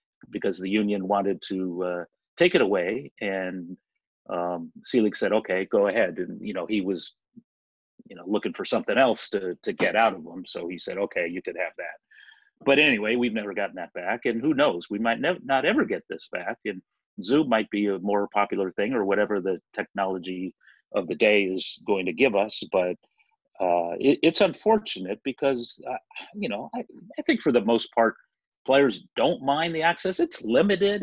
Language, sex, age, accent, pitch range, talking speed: English, male, 40-59, American, 95-160 Hz, 195 wpm